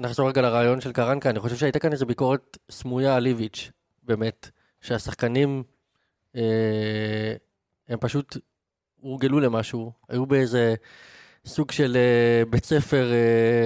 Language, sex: Hebrew, male